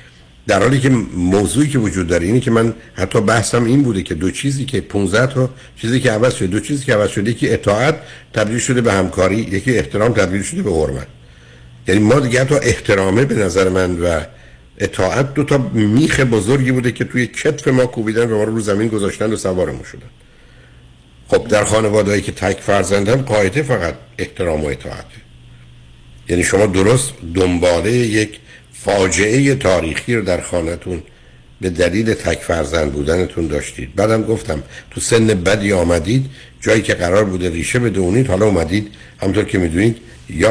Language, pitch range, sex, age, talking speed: Persian, 85-120 Hz, male, 60-79, 165 wpm